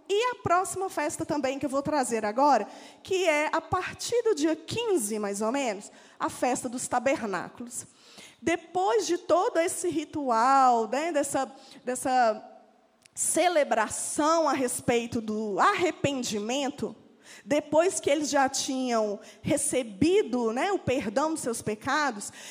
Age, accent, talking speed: 20-39, Brazilian, 130 wpm